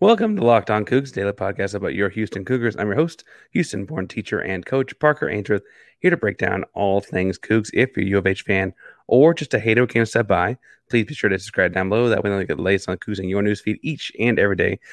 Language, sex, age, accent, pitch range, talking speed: English, male, 30-49, American, 100-130 Hz, 265 wpm